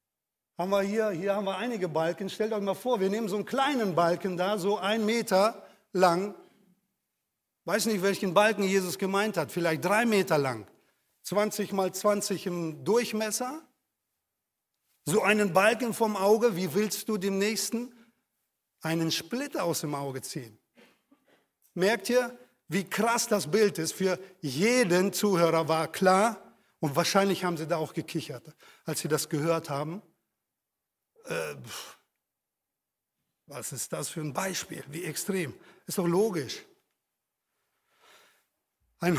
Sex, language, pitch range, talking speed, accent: male, German, 165-205 Hz, 140 wpm, German